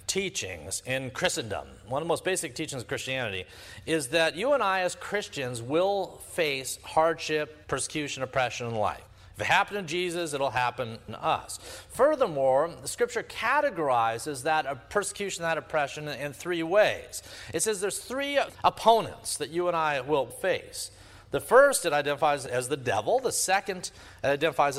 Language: English